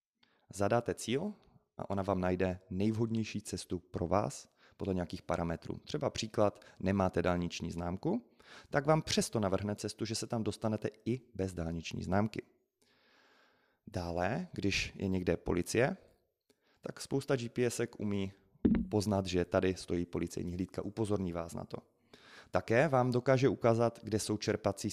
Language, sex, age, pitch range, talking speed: Czech, male, 30-49, 95-115 Hz, 135 wpm